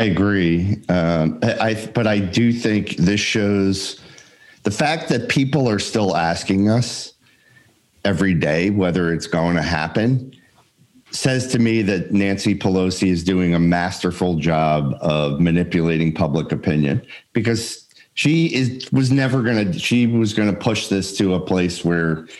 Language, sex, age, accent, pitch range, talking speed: English, male, 40-59, American, 90-110 Hz, 145 wpm